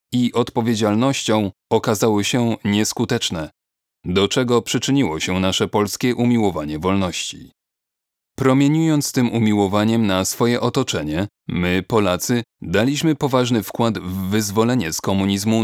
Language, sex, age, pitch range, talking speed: Polish, male, 30-49, 100-120 Hz, 105 wpm